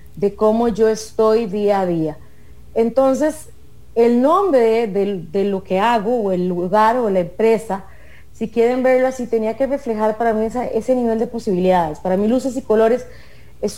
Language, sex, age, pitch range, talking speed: English, female, 30-49, 200-255 Hz, 180 wpm